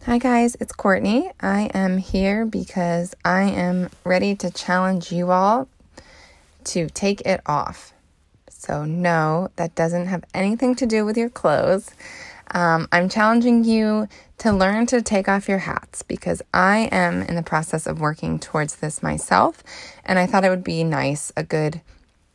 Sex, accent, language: female, American, English